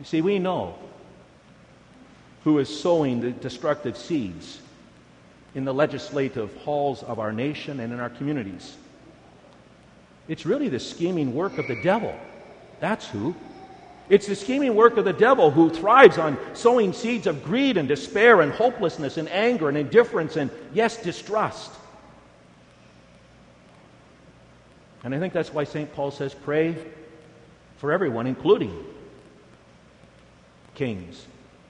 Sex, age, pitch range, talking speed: male, 50-69, 115-175 Hz, 130 wpm